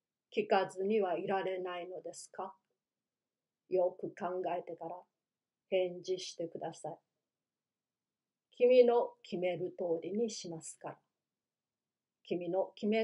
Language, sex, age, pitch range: Japanese, female, 40-59, 185-225 Hz